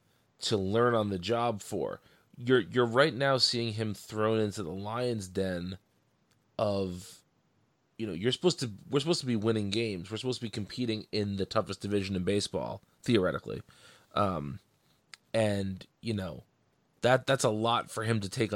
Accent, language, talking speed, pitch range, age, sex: American, English, 170 wpm, 100-120 Hz, 30-49, male